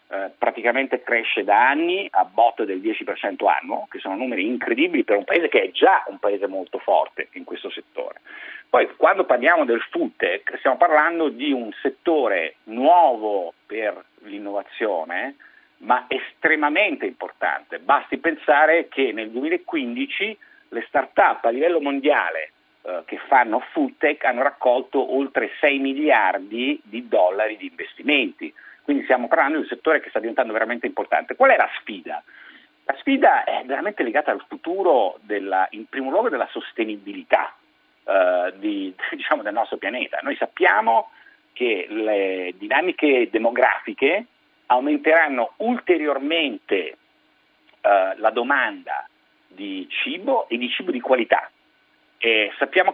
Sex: male